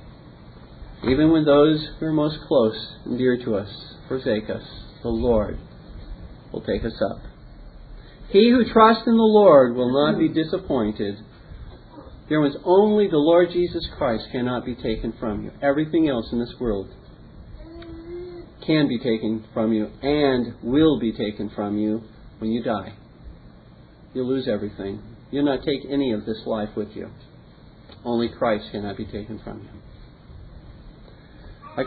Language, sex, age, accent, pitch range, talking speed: English, male, 40-59, American, 110-150 Hz, 150 wpm